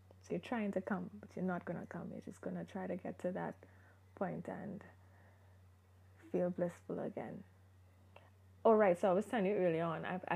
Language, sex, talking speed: English, female, 205 wpm